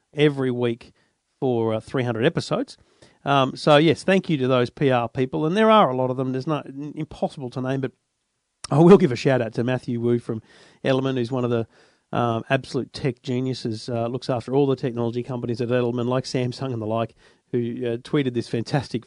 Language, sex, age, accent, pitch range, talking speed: English, male, 40-59, Australian, 120-155 Hz, 205 wpm